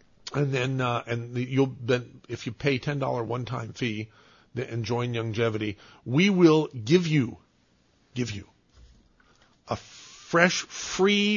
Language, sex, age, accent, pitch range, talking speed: English, male, 50-69, American, 115-145 Hz, 125 wpm